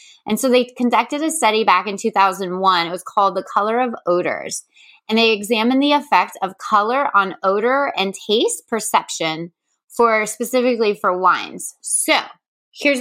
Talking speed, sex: 155 wpm, female